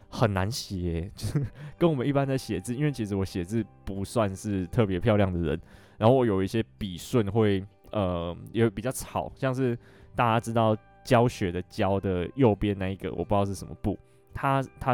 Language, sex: Chinese, male